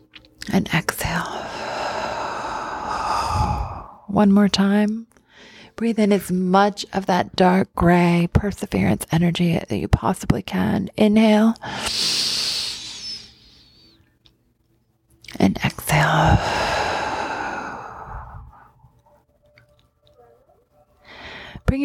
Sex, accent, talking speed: female, American, 65 wpm